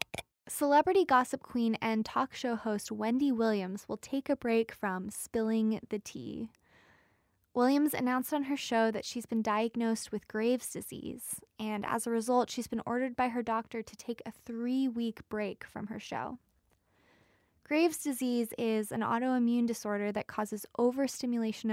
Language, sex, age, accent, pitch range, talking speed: English, female, 20-39, American, 210-255 Hz, 155 wpm